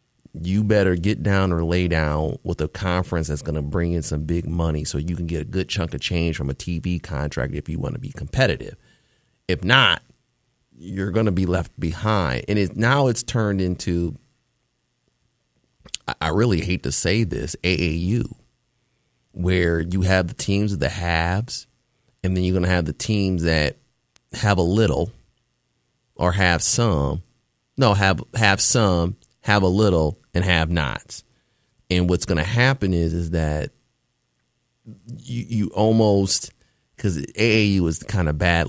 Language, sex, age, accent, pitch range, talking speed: English, male, 30-49, American, 85-110 Hz, 170 wpm